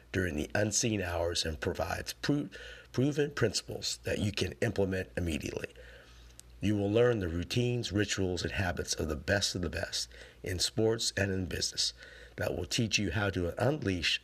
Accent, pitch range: American, 85-105 Hz